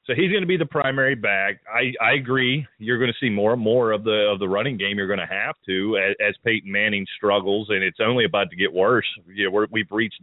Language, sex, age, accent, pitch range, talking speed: English, male, 30-49, American, 105-140 Hz, 270 wpm